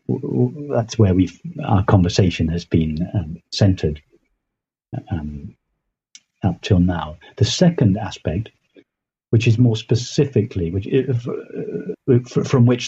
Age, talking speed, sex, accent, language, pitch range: 50-69, 110 wpm, male, British, English, 90-115 Hz